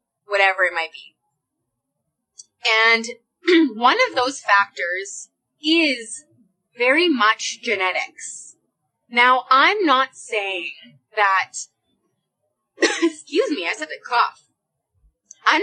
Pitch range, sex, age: 200-305 Hz, female, 20-39